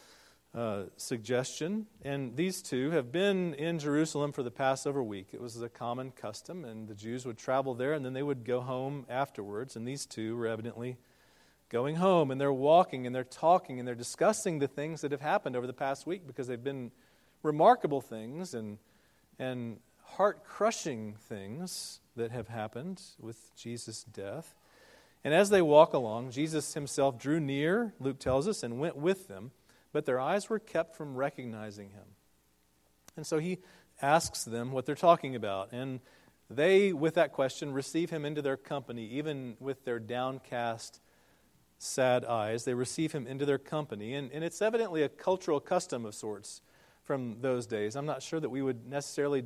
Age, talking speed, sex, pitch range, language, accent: 40-59, 175 wpm, male, 120-155 Hz, English, American